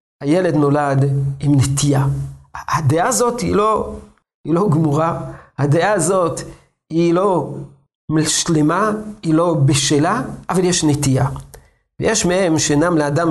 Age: 50-69